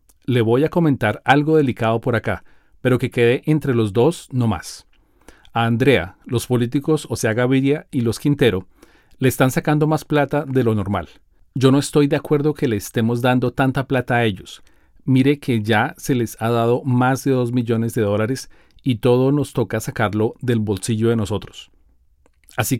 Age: 40-59